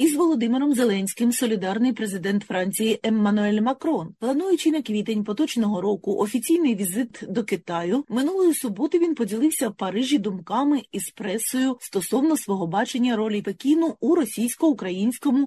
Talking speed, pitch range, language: 130 wpm, 205-285 Hz, Ukrainian